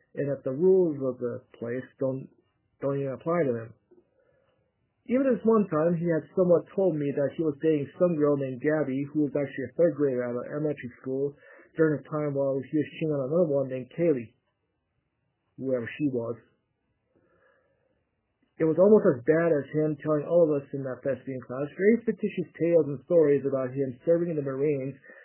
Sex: male